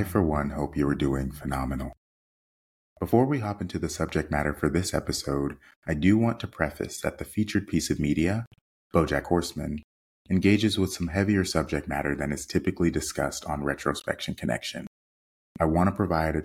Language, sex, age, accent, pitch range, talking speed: English, male, 30-49, American, 75-95 Hz, 180 wpm